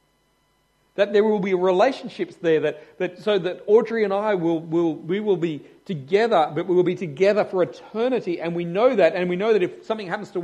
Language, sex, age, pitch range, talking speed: English, male, 40-59, 150-200 Hz, 220 wpm